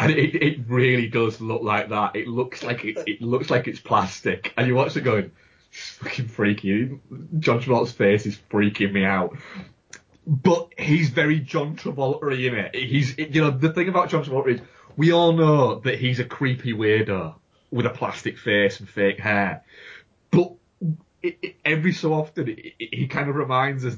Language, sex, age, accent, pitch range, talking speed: English, male, 30-49, British, 110-150 Hz, 185 wpm